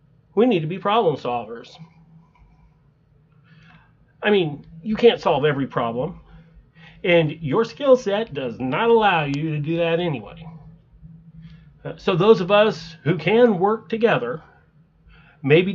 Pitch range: 150-185 Hz